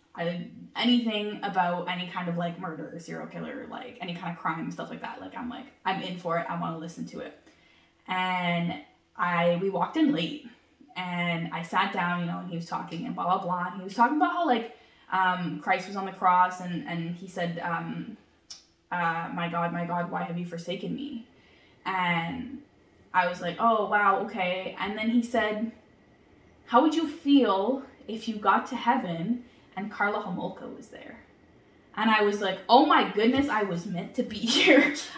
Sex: female